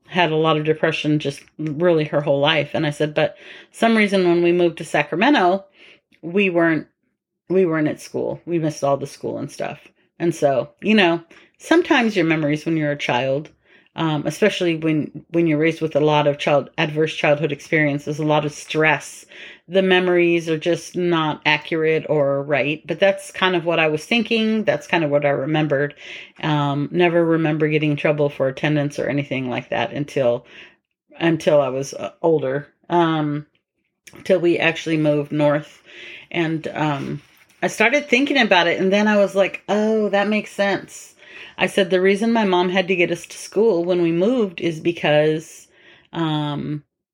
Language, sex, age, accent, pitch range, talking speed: English, female, 40-59, American, 150-180 Hz, 180 wpm